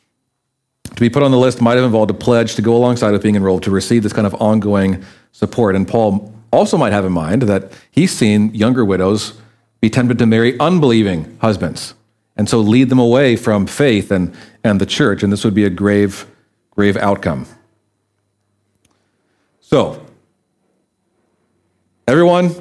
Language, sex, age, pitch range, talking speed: English, male, 40-59, 105-145 Hz, 165 wpm